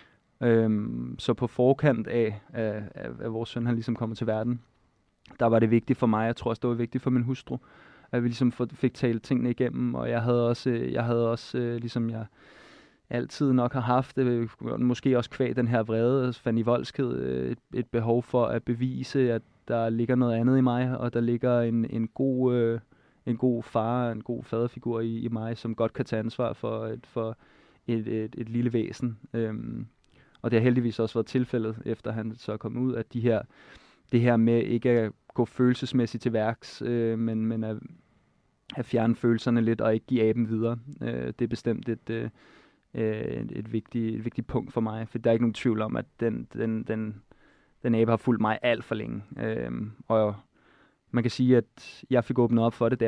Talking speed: 195 wpm